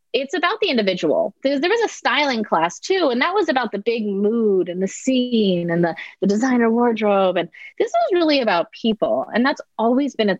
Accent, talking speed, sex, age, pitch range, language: American, 215 wpm, female, 30-49, 180-250 Hz, English